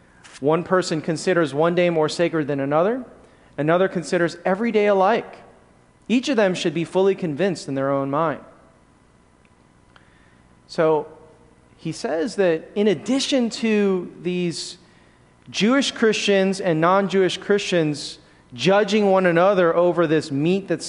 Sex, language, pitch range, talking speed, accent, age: male, English, 145-190 Hz, 130 wpm, American, 30-49